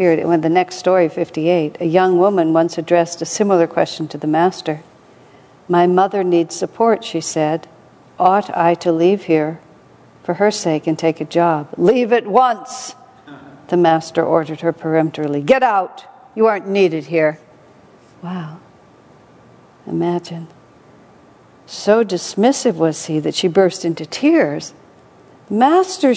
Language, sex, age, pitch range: English, female, 60-79, 160-200 Hz